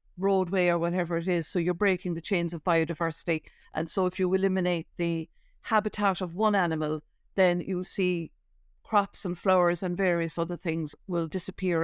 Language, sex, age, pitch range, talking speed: English, female, 50-69, 170-200 Hz, 170 wpm